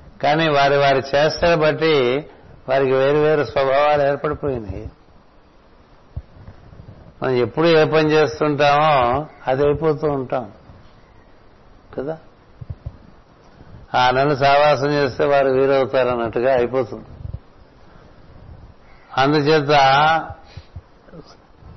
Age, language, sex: 60-79, Telugu, male